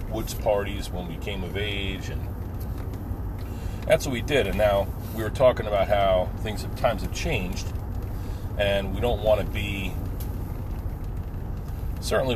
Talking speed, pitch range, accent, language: 150 wpm, 90-100 Hz, American, English